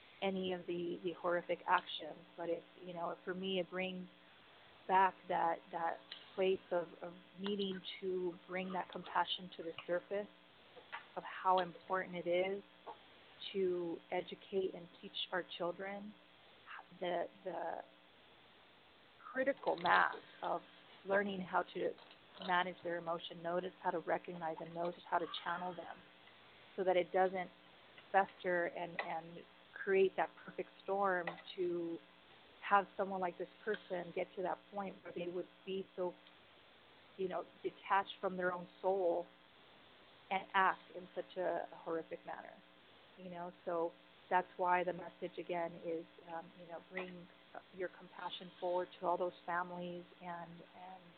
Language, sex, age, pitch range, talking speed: English, female, 30-49, 175-190 Hz, 145 wpm